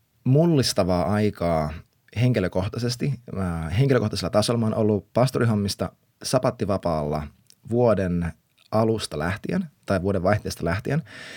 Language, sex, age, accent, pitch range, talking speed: Finnish, male, 30-49, native, 100-125 Hz, 95 wpm